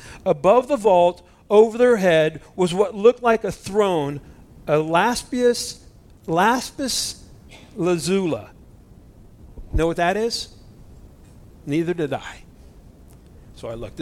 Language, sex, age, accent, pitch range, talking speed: English, male, 50-69, American, 150-195 Hz, 110 wpm